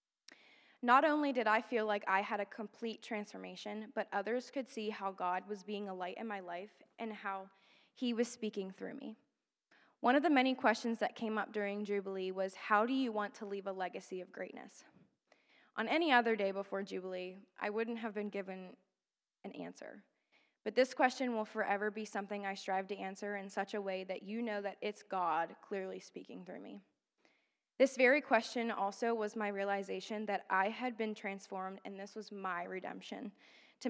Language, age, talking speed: English, 20-39, 190 wpm